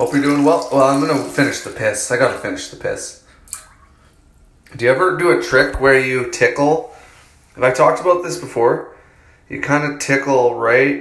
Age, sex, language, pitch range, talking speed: 20-39, male, English, 100-140 Hz, 200 wpm